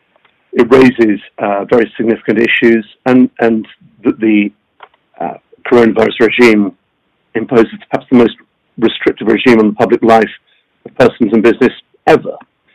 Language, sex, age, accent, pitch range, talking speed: English, male, 50-69, British, 110-130 Hz, 130 wpm